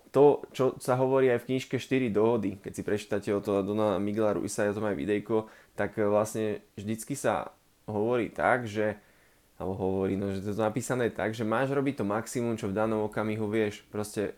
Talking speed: 185 wpm